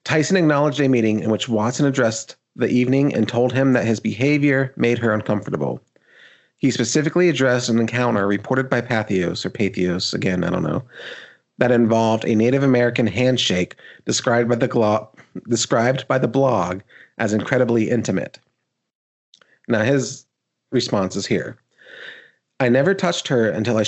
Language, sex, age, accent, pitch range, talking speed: English, male, 30-49, American, 110-135 Hz, 155 wpm